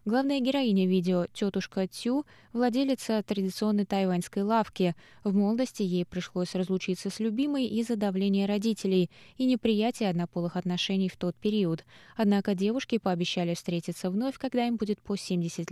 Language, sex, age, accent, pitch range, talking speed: Russian, female, 20-39, native, 175-215 Hz, 135 wpm